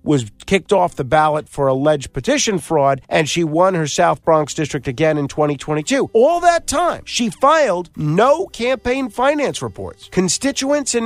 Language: English